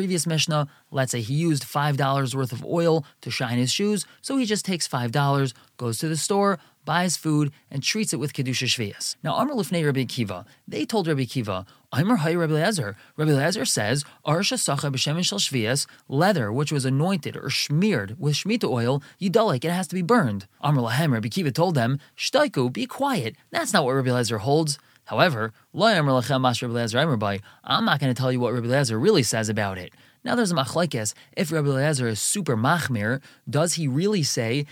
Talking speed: 190 wpm